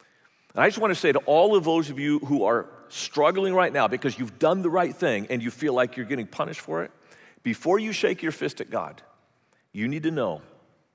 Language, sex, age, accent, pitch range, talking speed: English, male, 40-59, American, 150-225 Hz, 225 wpm